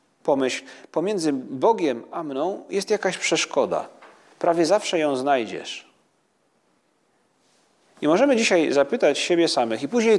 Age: 40-59